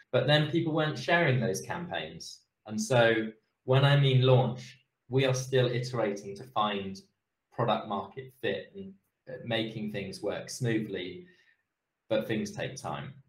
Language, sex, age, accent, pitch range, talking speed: English, male, 20-39, British, 100-130 Hz, 140 wpm